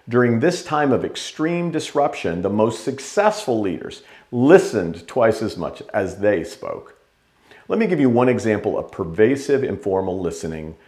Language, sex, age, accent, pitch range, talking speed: English, male, 50-69, American, 115-160 Hz, 150 wpm